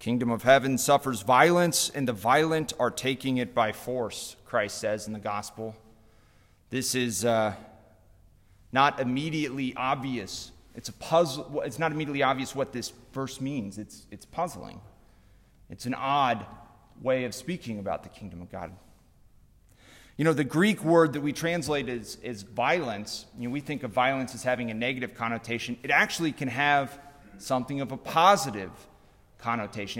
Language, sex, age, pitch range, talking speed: English, male, 30-49, 110-140 Hz, 165 wpm